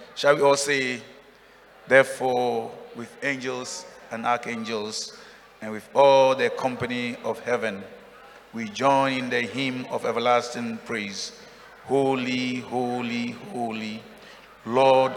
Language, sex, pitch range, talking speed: English, male, 125-175 Hz, 110 wpm